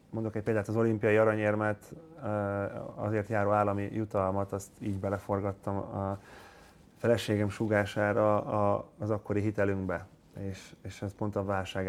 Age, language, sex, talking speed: 30-49, Hungarian, male, 120 wpm